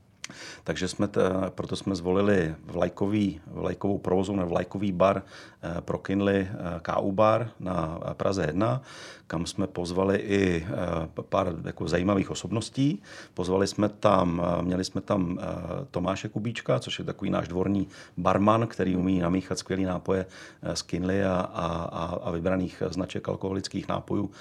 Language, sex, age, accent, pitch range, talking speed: Czech, male, 40-59, native, 90-100 Hz, 135 wpm